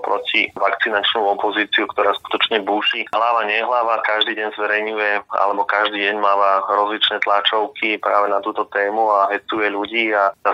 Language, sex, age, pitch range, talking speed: Slovak, male, 30-49, 100-110 Hz, 150 wpm